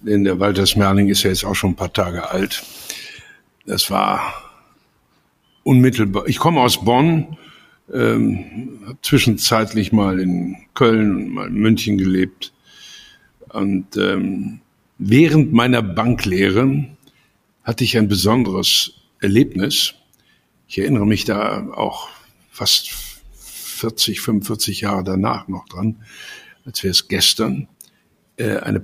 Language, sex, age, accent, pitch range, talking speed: German, male, 60-79, German, 100-120 Hz, 120 wpm